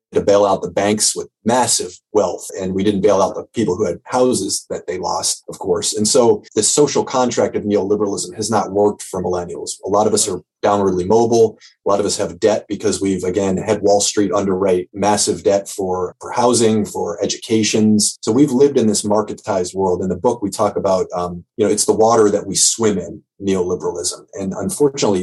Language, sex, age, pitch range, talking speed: English, male, 30-49, 95-120 Hz, 210 wpm